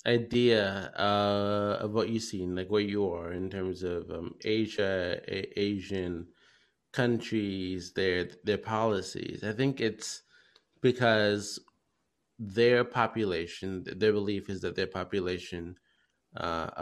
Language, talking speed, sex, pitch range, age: English, 120 wpm, male, 95-105 Hz, 20-39